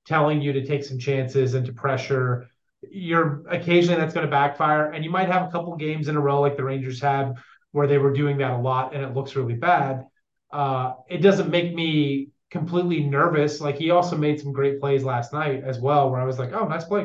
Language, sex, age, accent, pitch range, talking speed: English, male, 30-49, American, 130-150 Hz, 230 wpm